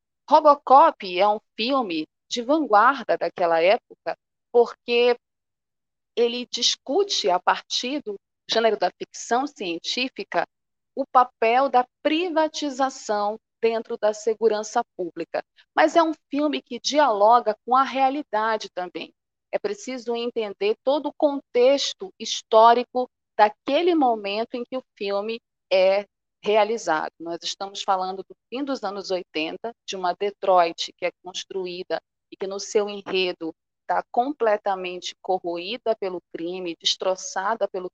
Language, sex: Portuguese, female